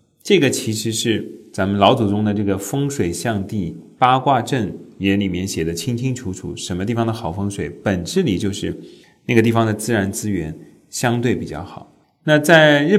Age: 30-49